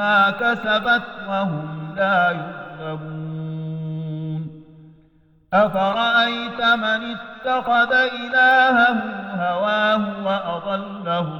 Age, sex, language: 50-69, male, Arabic